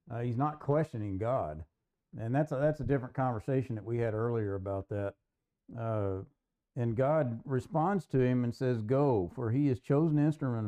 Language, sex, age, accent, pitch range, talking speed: English, male, 50-69, American, 110-145 Hz, 180 wpm